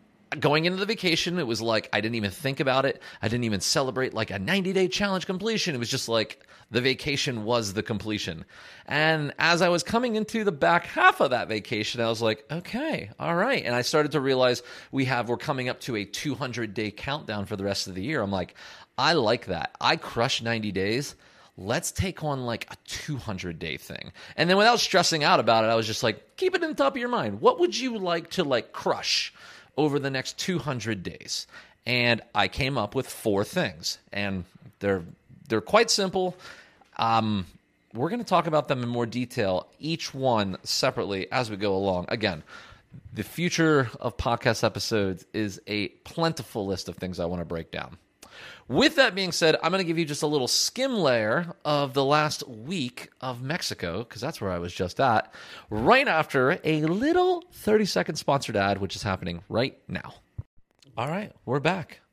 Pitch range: 110-170 Hz